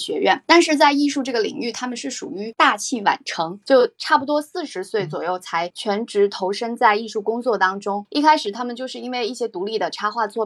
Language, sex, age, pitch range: Chinese, female, 20-39, 200-275 Hz